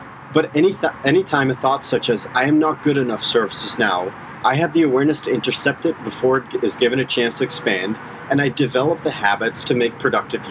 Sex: male